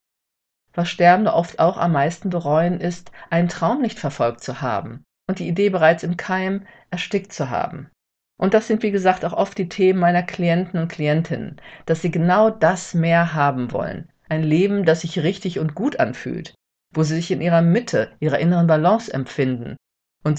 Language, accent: German, German